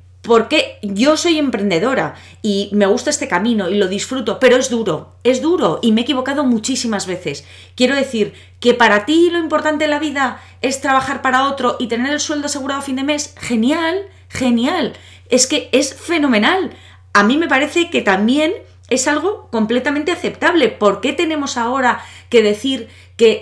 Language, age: Spanish, 20-39